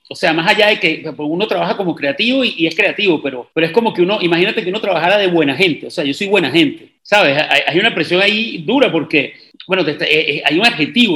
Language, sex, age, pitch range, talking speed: English, male, 40-59, 165-215 Hz, 230 wpm